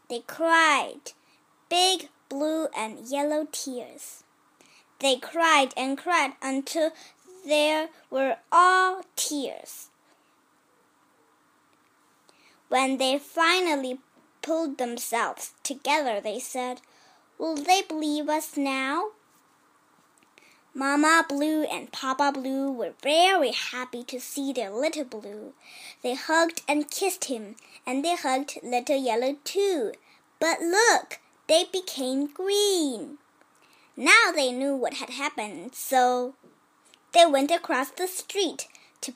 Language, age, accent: Chinese, 10-29, American